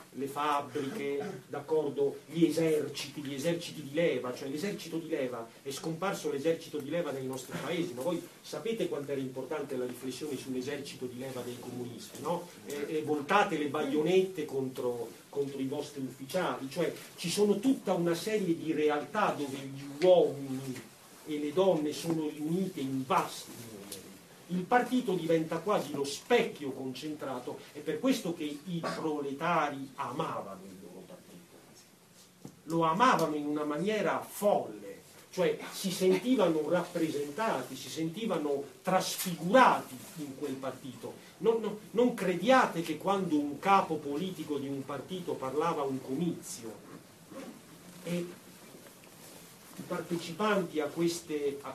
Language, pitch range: Italian, 140-180 Hz